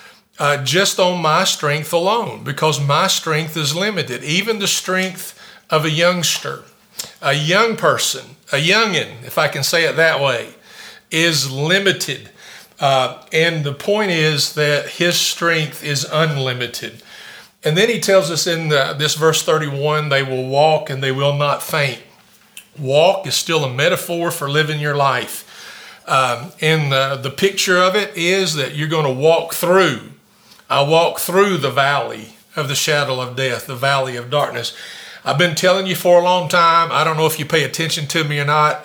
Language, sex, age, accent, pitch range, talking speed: English, male, 50-69, American, 140-170 Hz, 175 wpm